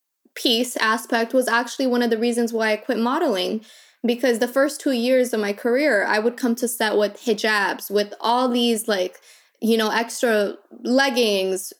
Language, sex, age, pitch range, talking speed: English, female, 20-39, 225-270 Hz, 180 wpm